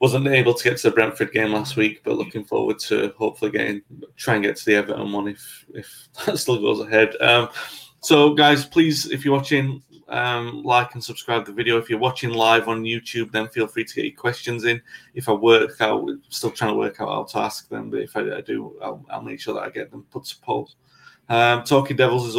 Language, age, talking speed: English, 20-39, 240 wpm